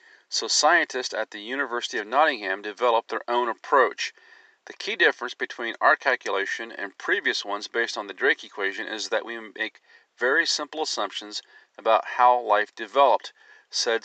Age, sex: 40-59, male